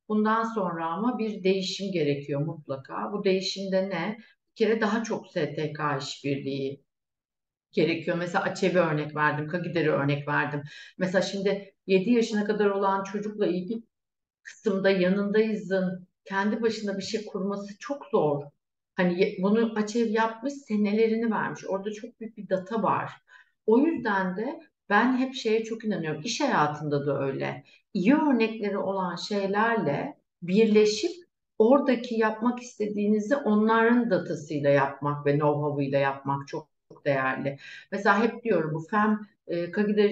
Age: 60-79